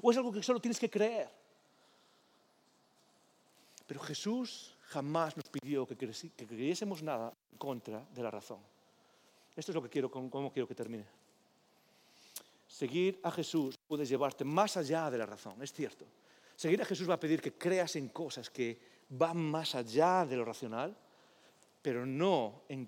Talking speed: 165 wpm